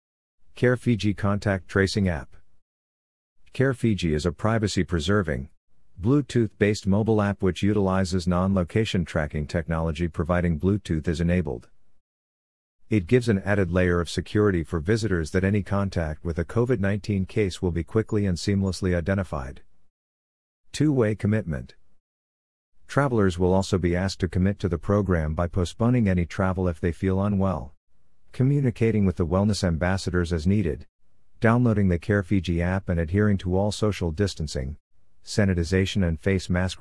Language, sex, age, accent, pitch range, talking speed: English, male, 50-69, American, 85-105 Hz, 150 wpm